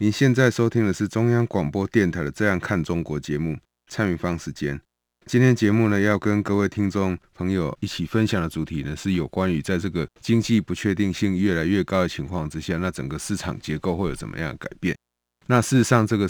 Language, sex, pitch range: Chinese, male, 85-110 Hz